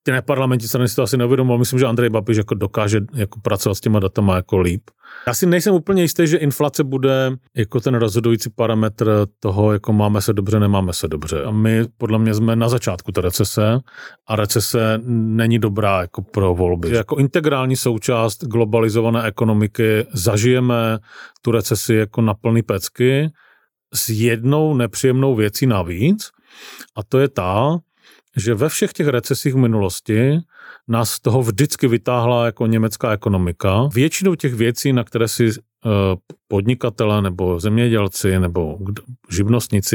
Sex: male